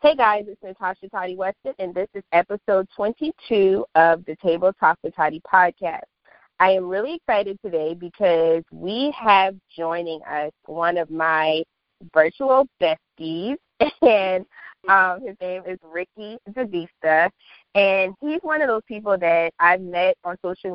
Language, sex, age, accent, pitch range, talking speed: English, female, 20-39, American, 165-205 Hz, 145 wpm